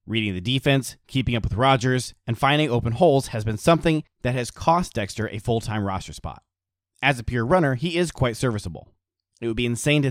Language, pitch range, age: English, 105-140 Hz, 30-49